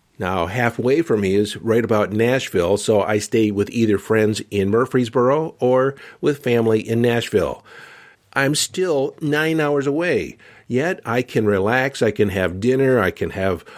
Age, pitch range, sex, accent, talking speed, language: 50-69, 105-135 Hz, male, American, 160 wpm, English